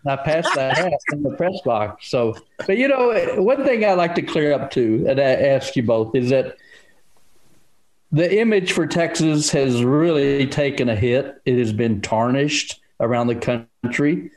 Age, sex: 60-79, male